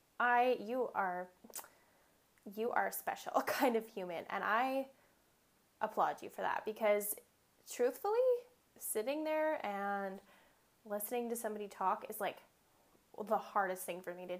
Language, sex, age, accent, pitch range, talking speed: English, female, 10-29, American, 200-255 Hz, 135 wpm